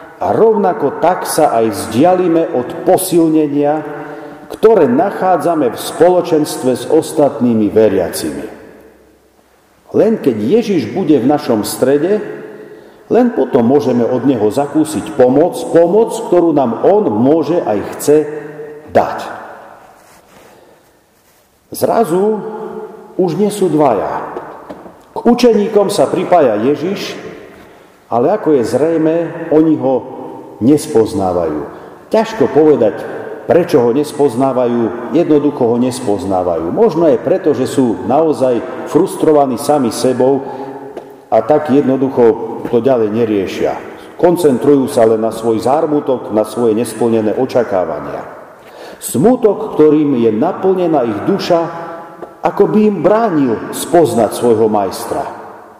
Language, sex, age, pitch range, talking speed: Slovak, male, 50-69, 125-175 Hz, 110 wpm